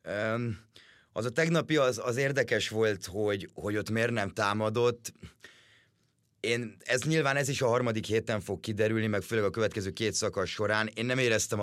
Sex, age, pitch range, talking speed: male, 30-49, 95-115 Hz, 170 wpm